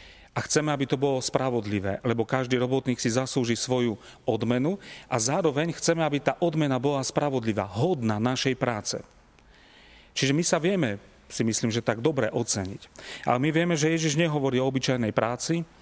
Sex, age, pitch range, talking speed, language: male, 40-59, 115-145 Hz, 165 wpm, Slovak